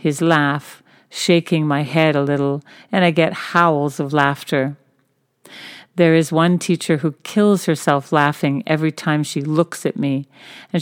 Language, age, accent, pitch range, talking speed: English, 50-69, American, 145-175 Hz, 155 wpm